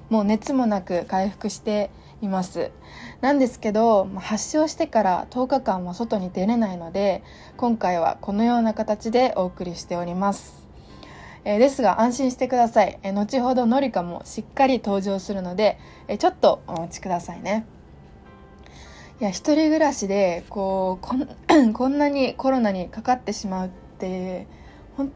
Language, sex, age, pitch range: Japanese, female, 20-39, 185-235 Hz